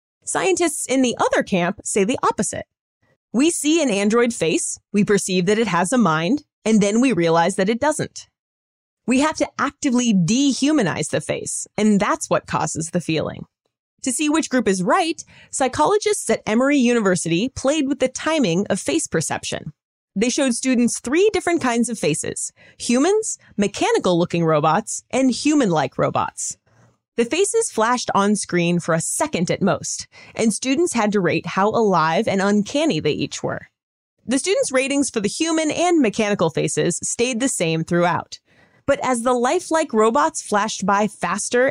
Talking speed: 165 wpm